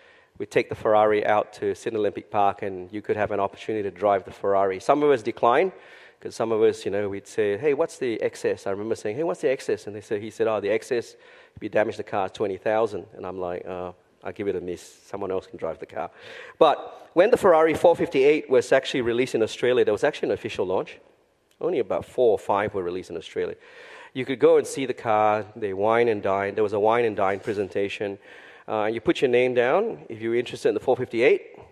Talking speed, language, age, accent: 240 wpm, English, 40-59, Malaysian